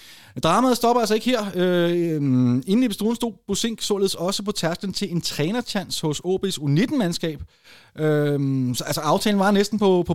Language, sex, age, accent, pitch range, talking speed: Danish, male, 30-49, native, 145-195 Hz, 170 wpm